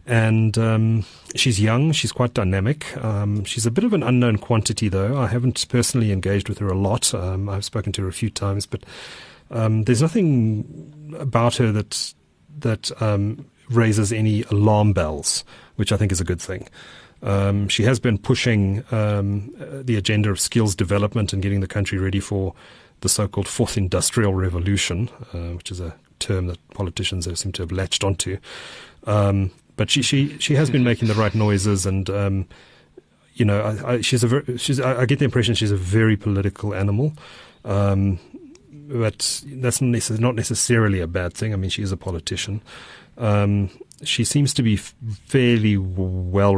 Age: 30-49